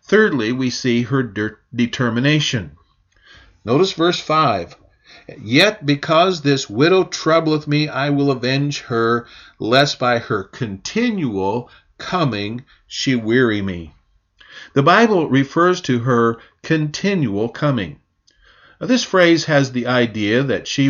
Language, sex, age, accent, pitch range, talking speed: English, male, 50-69, American, 120-160 Hz, 115 wpm